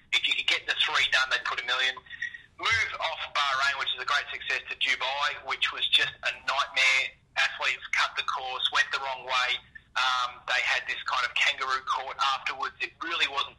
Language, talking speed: English, 205 wpm